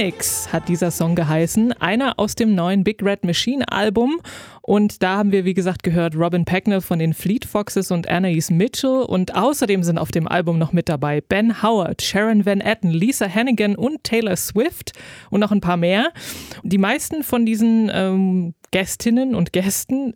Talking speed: 180 wpm